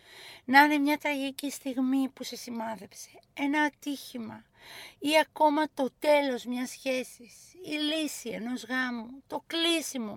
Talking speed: 130 wpm